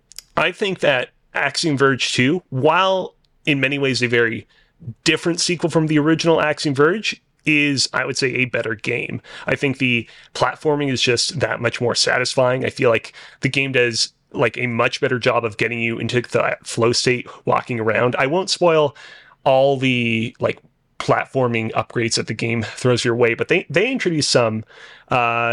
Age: 30-49